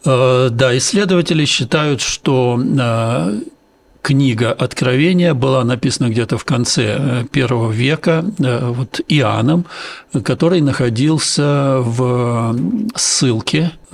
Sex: male